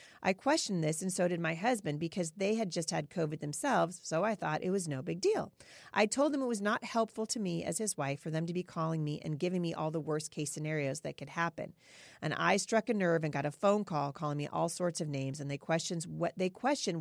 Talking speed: 245 wpm